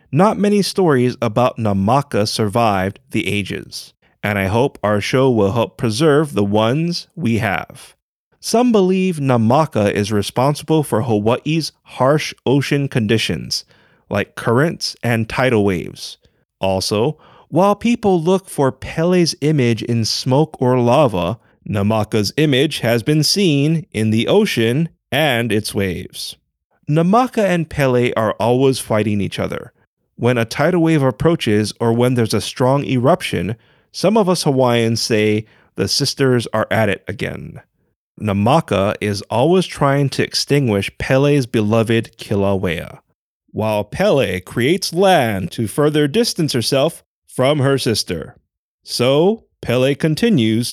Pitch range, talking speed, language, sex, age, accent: 110-155 Hz, 130 wpm, English, male, 30-49, American